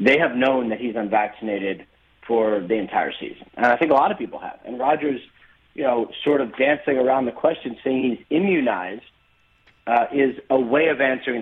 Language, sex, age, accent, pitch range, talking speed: English, male, 30-49, American, 110-130 Hz, 195 wpm